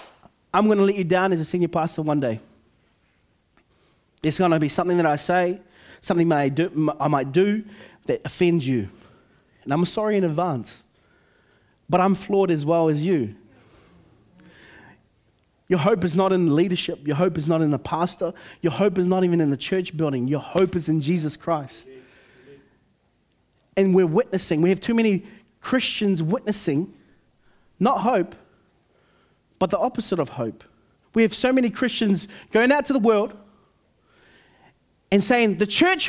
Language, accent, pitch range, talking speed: English, Australian, 155-215 Hz, 165 wpm